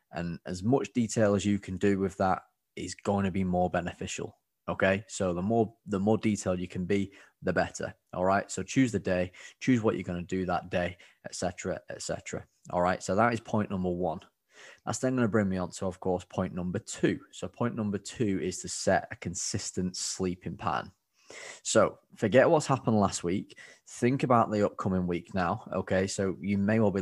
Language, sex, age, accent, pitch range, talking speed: English, male, 20-39, British, 90-105 Hz, 215 wpm